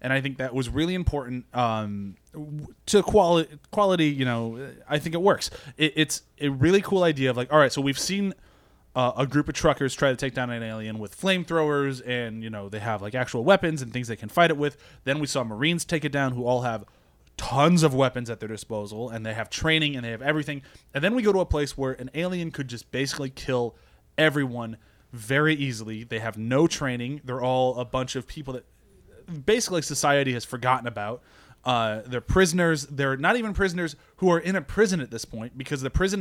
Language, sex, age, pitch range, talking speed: English, male, 20-39, 125-160 Hz, 215 wpm